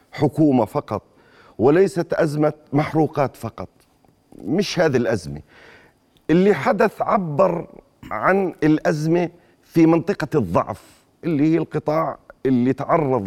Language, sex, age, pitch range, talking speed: Arabic, male, 40-59, 125-170 Hz, 100 wpm